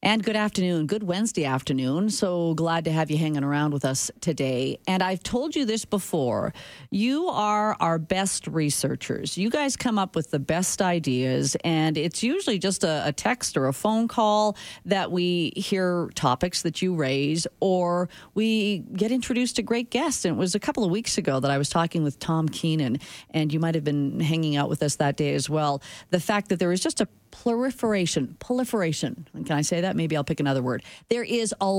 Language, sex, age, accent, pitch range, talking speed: English, female, 40-59, American, 155-210 Hz, 205 wpm